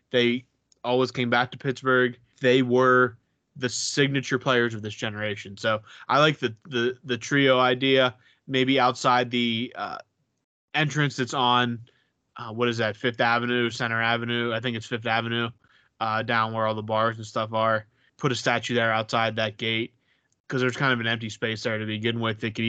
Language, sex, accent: English, male, American